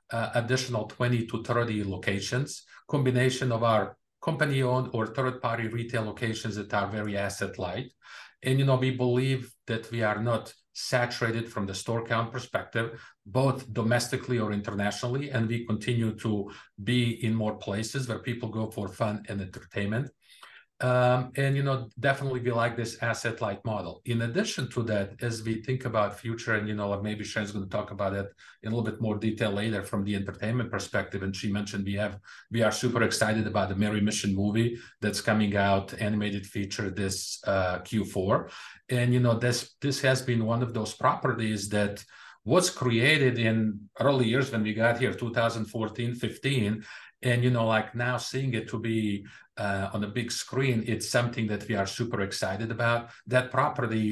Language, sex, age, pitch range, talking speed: English, male, 50-69, 105-125 Hz, 185 wpm